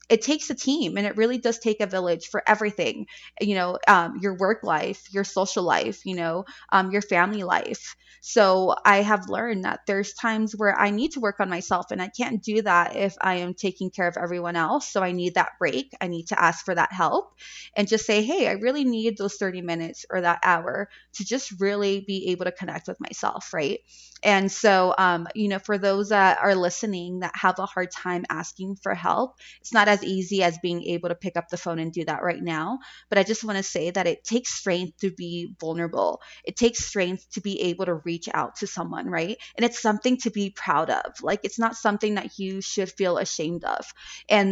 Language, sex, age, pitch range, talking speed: English, female, 20-39, 180-215 Hz, 225 wpm